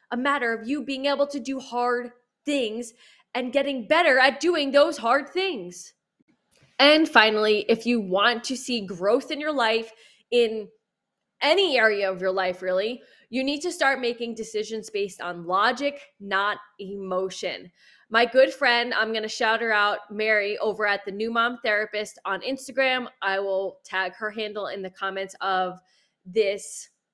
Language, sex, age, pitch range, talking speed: English, female, 20-39, 205-270 Hz, 165 wpm